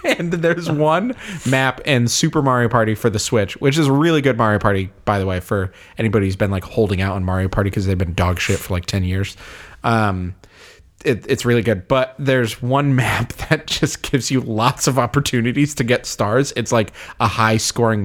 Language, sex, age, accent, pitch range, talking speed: English, male, 30-49, American, 110-165 Hz, 205 wpm